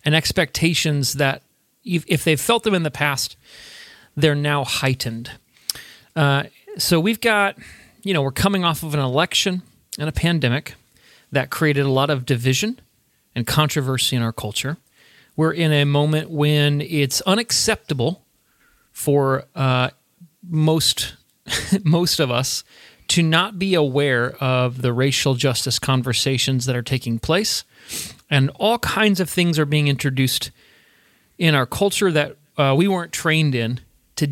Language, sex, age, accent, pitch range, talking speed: English, male, 40-59, American, 130-180 Hz, 145 wpm